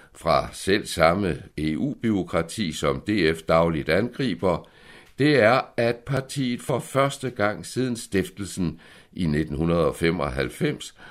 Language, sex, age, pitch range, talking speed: Danish, male, 60-79, 75-115 Hz, 105 wpm